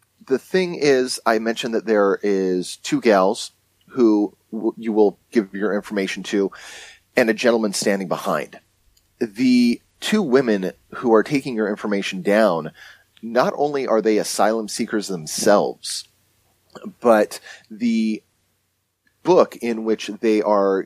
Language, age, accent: English, 30-49, American